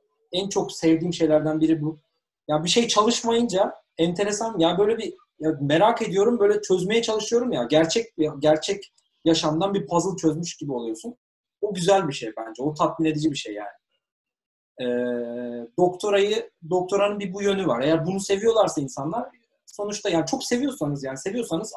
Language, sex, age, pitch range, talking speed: Turkish, male, 30-49, 145-195 Hz, 165 wpm